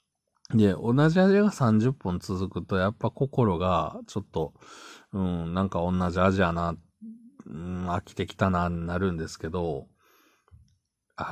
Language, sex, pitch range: Japanese, male, 90-130 Hz